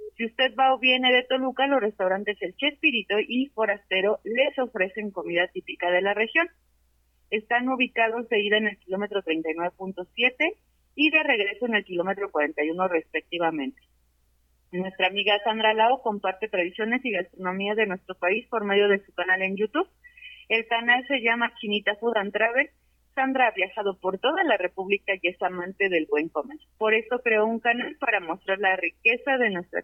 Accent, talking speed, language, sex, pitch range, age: Mexican, 170 wpm, Spanish, female, 190-245 Hz, 40-59